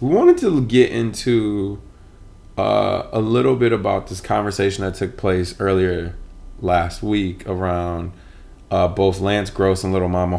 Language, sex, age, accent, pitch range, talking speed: English, male, 20-39, American, 90-105 Hz, 150 wpm